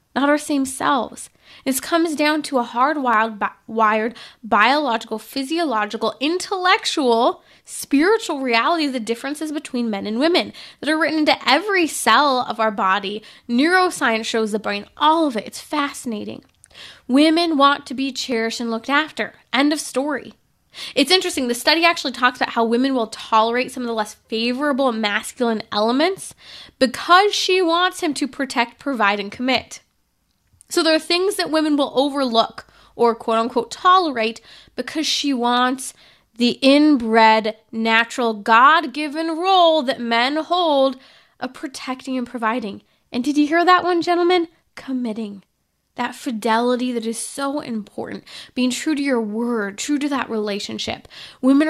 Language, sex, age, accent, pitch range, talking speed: English, female, 10-29, American, 230-300 Hz, 150 wpm